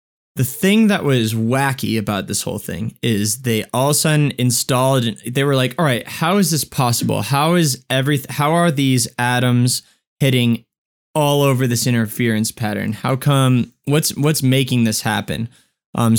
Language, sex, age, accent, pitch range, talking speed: English, male, 20-39, American, 115-145 Hz, 170 wpm